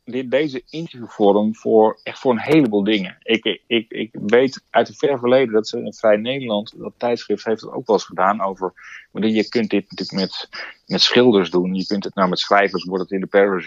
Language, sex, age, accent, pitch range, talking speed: Dutch, male, 40-59, Dutch, 95-105 Hz, 220 wpm